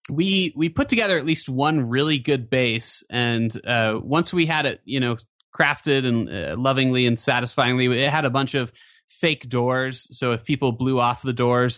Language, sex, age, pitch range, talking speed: English, male, 20-39, 115-135 Hz, 195 wpm